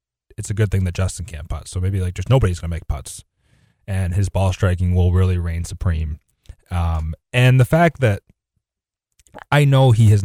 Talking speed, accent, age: 195 wpm, American, 30-49